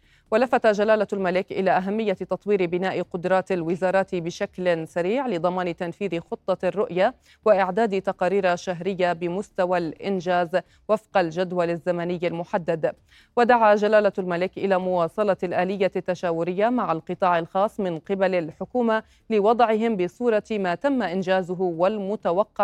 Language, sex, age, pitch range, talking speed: Arabic, female, 30-49, 180-205 Hz, 115 wpm